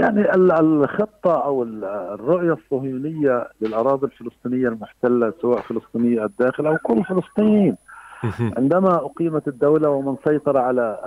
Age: 50-69